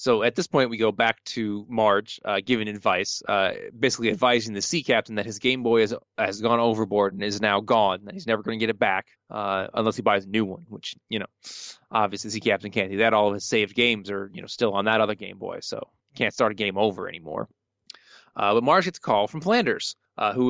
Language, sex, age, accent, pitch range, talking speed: English, male, 20-39, American, 105-130 Hz, 250 wpm